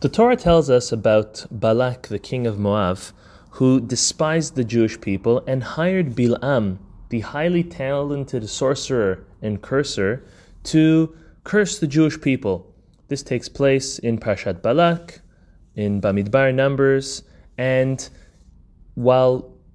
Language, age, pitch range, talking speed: English, 20-39, 110-150 Hz, 120 wpm